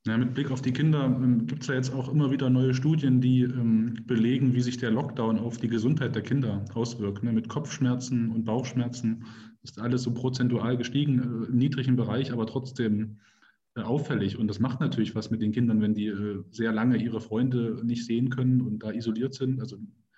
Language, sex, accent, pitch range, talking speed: German, male, German, 115-130 Hz, 200 wpm